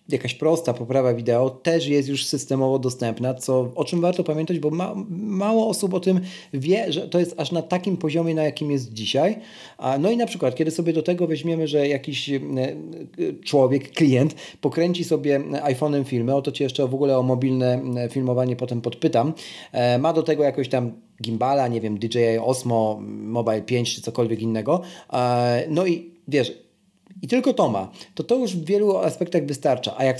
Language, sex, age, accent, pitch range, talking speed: Polish, male, 40-59, native, 130-170 Hz, 180 wpm